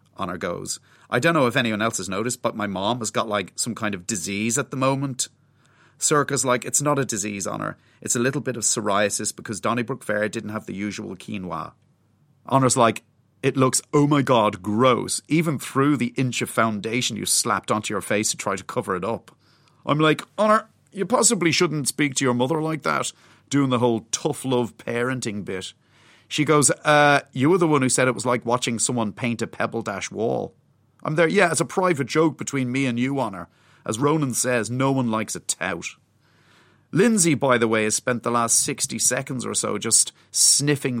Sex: male